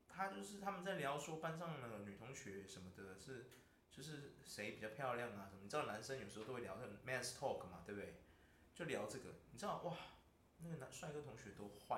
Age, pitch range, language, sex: 20-39, 130-210 Hz, Chinese, male